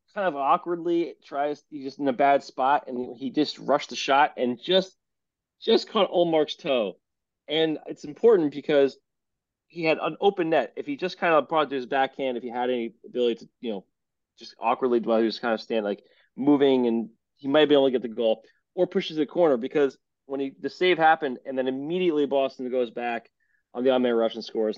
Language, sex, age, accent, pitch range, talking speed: English, male, 30-49, American, 120-155 Hz, 225 wpm